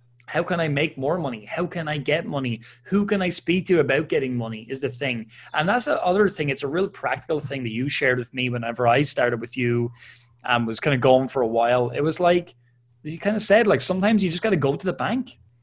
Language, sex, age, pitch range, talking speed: English, male, 20-39, 120-160 Hz, 260 wpm